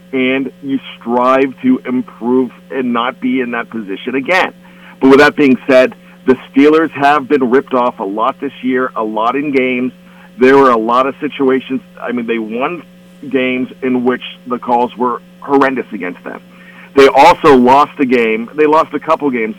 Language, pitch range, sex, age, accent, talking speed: English, 130-180 Hz, male, 40-59, American, 185 wpm